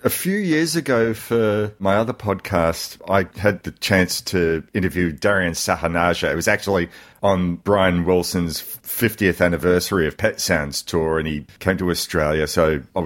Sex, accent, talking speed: male, Australian, 160 wpm